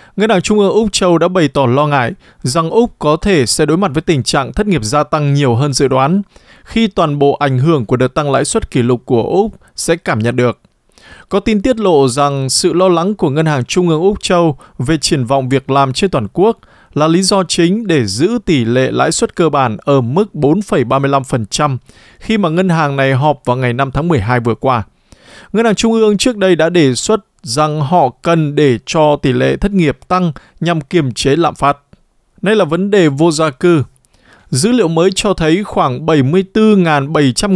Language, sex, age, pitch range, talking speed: Vietnamese, male, 20-39, 135-190 Hz, 215 wpm